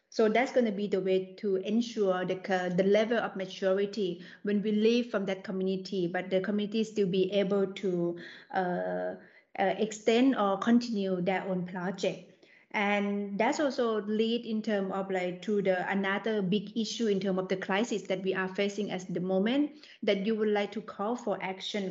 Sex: female